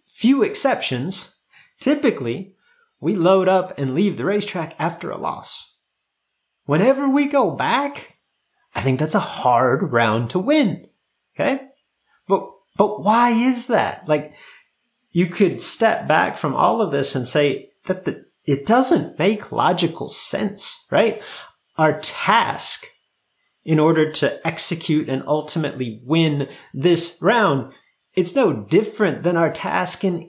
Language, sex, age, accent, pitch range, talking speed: English, male, 30-49, American, 155-230 Hz, 135 wpm